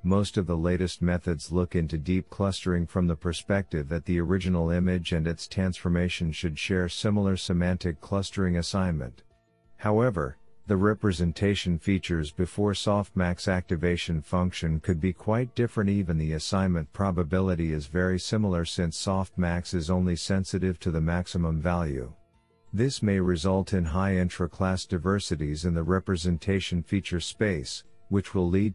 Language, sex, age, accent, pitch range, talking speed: English, male, 50-69, American, 85-100 Hz, 140 wpm